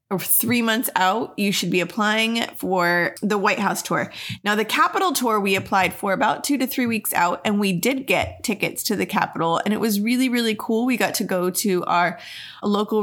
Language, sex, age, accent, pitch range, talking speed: English, female, 20-39, American, 185-230 Hz, 210 wpm